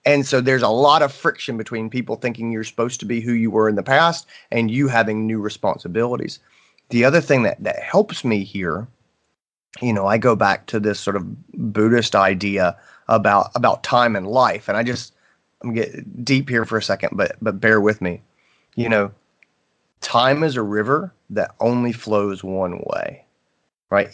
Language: English